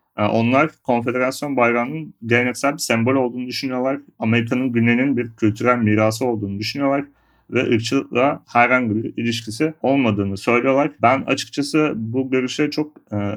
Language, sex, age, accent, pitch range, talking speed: Turkish, male, 40-59, native, 110-135 Hz, 125 wpm